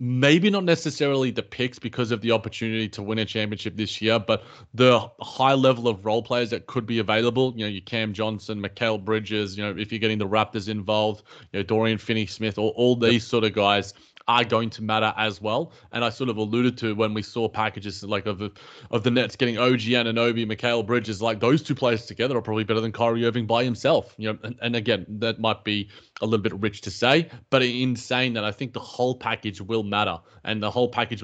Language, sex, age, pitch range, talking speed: English, male, 30-49, 110-130 Hz, 225 wpm